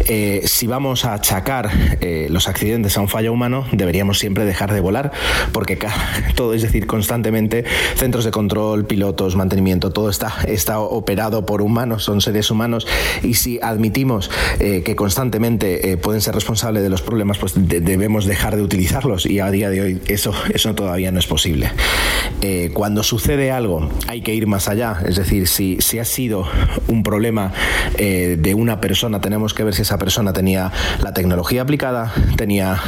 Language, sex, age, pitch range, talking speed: Spanish, male, 30-49, 95-115 Hz, 175 wpm